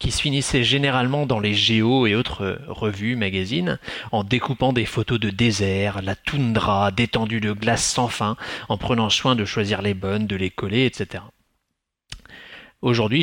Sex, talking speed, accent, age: male, 165 wpm, French, 30-49